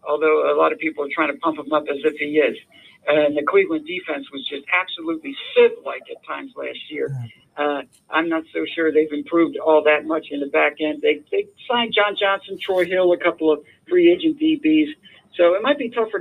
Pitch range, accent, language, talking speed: 150-225 Hz, American, English, 220 wpm